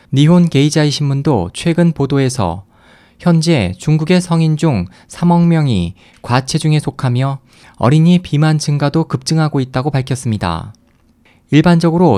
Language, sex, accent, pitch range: Korean, male, native, 125-165 Hz